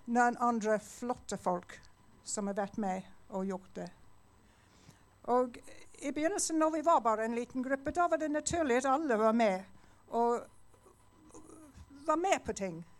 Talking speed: 155 wpm